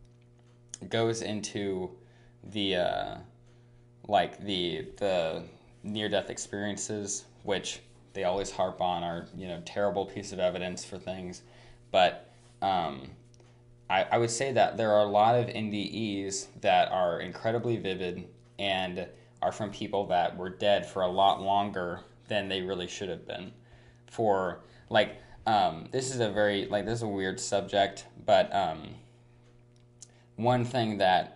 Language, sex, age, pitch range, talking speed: English, male, 20-39, 95-120 Hz, 145 wpm